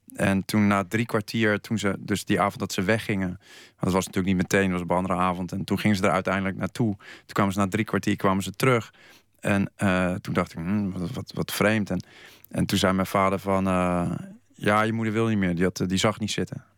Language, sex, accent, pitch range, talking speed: Dutch, male, Dutch, 95-105 Hz, 255 wpm